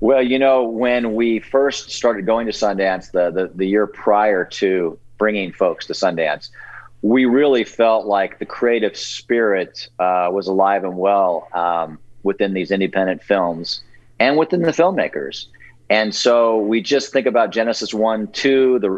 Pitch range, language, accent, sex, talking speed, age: 100-120 Hz, English, American, male, 160 wpm, 40-59